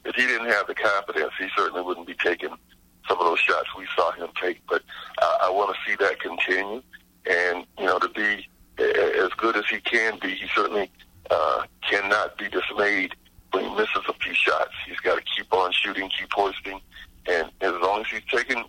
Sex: male